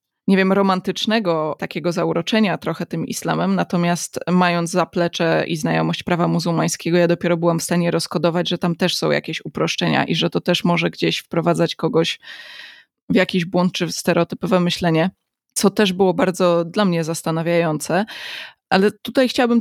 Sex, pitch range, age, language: female, 170-190 Hz, 20-39, Polish